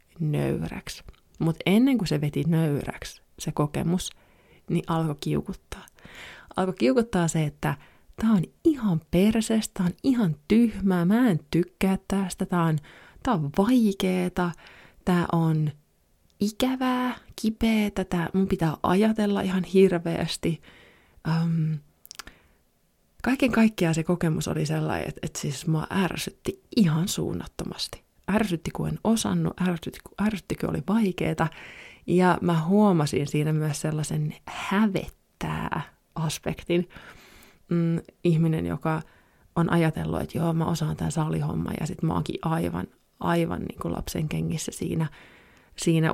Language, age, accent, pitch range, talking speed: Finnish, 30-49, native, 155-190 Hz, 120 wpm